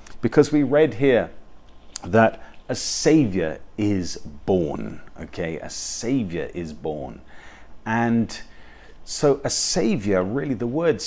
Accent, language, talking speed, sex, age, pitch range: British, English, 115 wpm, male, 40-59, 105-135 Hz